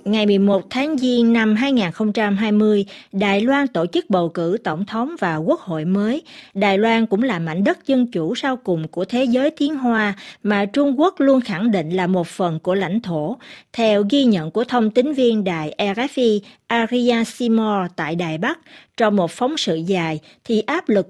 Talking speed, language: 190 wpm, Vietnamese